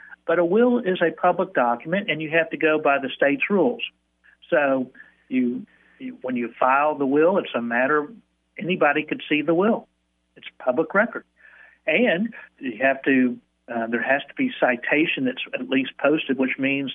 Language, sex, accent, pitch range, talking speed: English, male, American, 130-180 Hz, 175 wpm